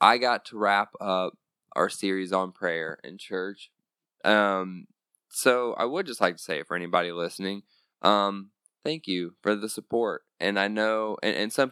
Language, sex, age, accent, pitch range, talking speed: English, male, 20-39, American, 90-100 Hz, 175 wpm